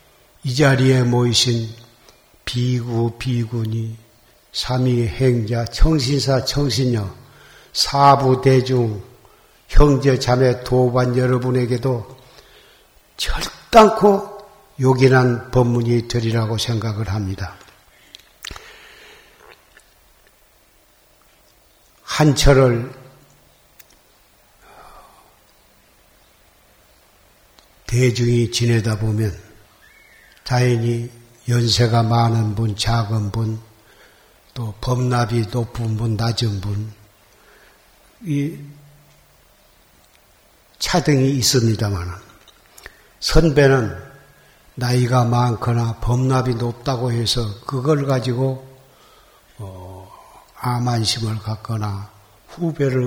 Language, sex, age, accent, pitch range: Korean, male, 60-79, native, 115-130 Hz